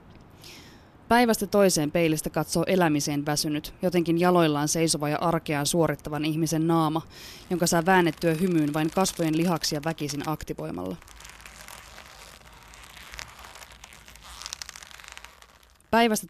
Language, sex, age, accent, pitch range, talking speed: Finnish, female, 20-39, native, 155-185 Hz, 90 wpm